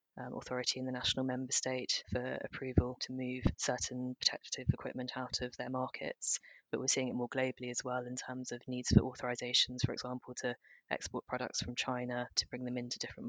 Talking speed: 200 wpm